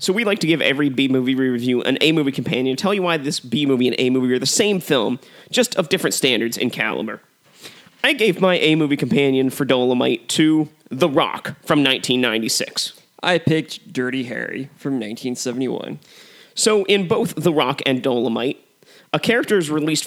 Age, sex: 30-49, male